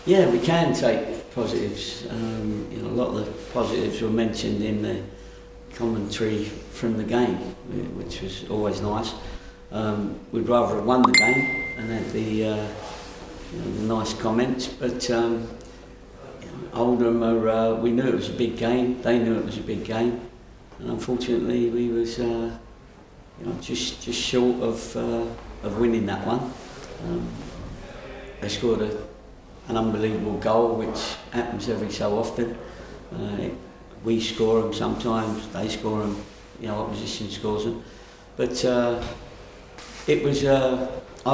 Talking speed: 160 wpm